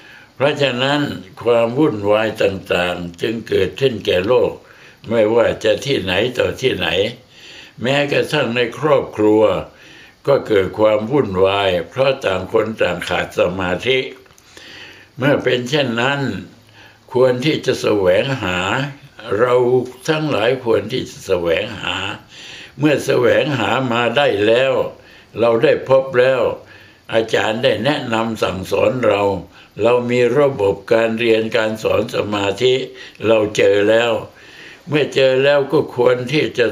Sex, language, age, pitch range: male, Thai, 60-79, 110-145 Hz